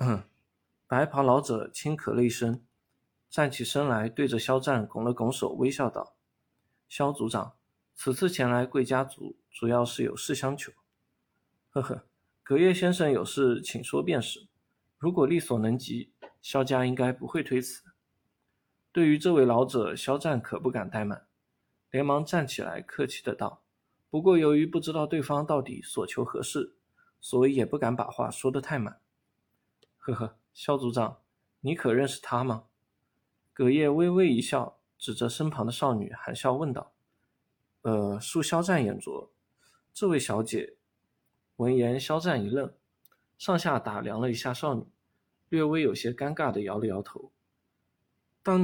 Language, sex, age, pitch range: Chinese, male, 20-39, 120-150 Hz